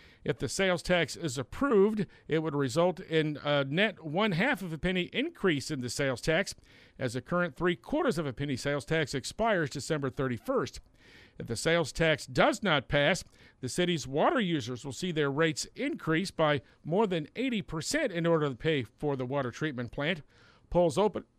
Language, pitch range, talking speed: English, 145-190 Hz, 180 wpm